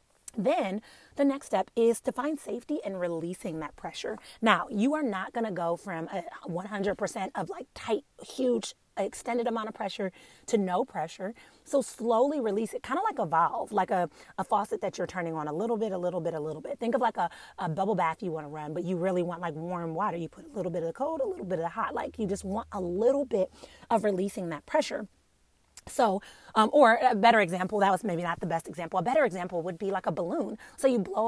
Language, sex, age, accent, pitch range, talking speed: English, female, 30-49, American, 170-230 Hz, 240 wpm